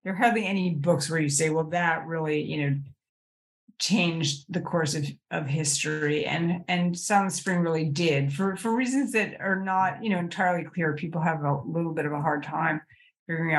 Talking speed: 200 wpm